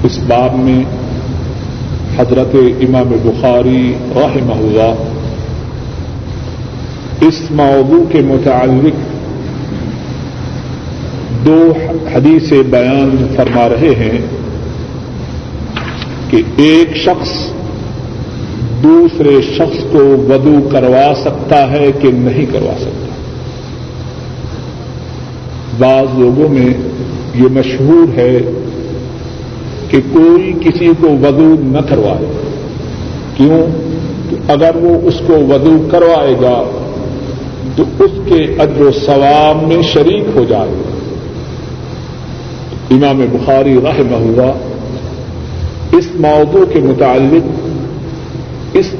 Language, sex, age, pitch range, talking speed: Urdu, male, 50-69, 125-155 Hz, 90 wpm